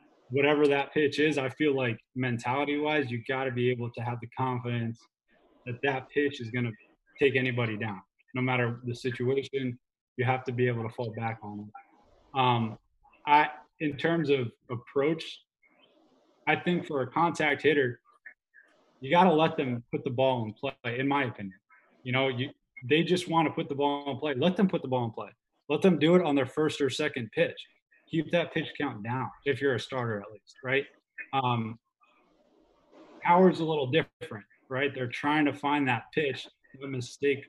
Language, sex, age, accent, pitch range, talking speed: English, male, 20-39, American, 120-145 Hz, 190 wpm